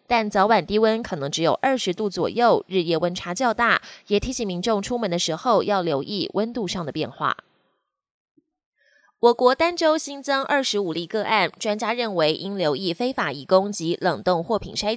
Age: 20-39